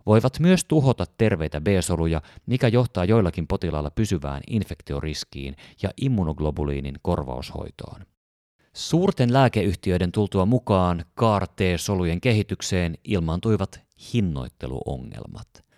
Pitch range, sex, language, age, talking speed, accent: 85-120 Hz, male, Finnish, 30-49, 85 wpm, native